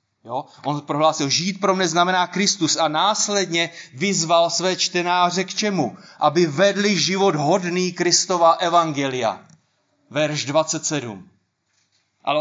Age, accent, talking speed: 30-49, native, 115 wpm